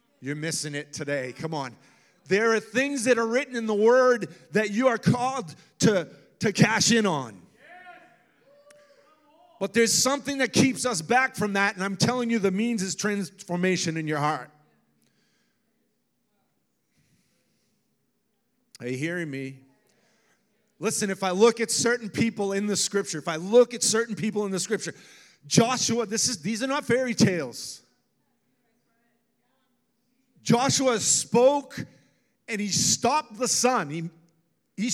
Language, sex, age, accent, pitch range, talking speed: English, male, 40-59, American, 165-230 Hz, 145 wpm